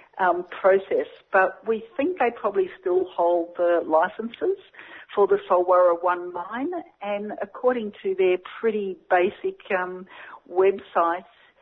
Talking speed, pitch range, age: 125 wpm, 165-225 Hz, 50-69